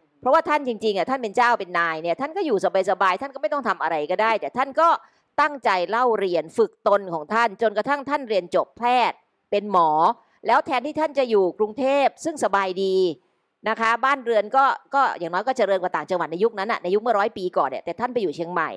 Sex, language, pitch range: female, Thai, 185-255 Hz